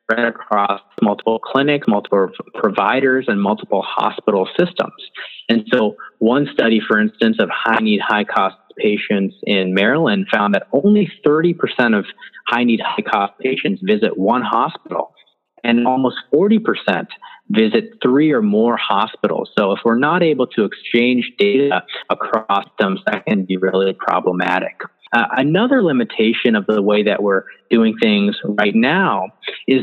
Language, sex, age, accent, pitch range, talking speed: English, male, 30-49, American, 105-145 Hz, 135 wpm